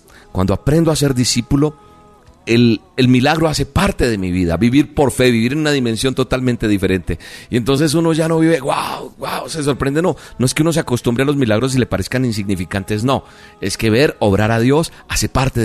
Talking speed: 210 wpm